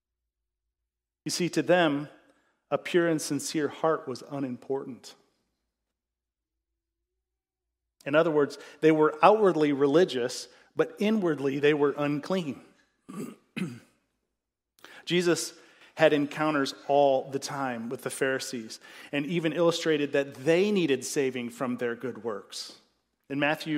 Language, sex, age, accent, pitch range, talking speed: English, male, 40-59, American, 135-170 Hz, 115 wpm